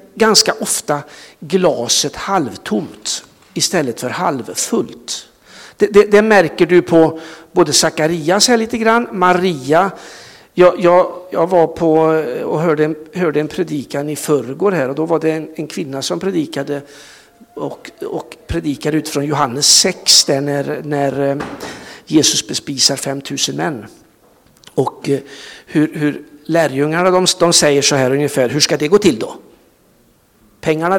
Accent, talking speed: native, 140 wpm